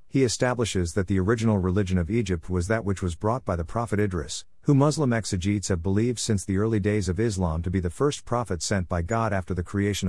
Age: 50-69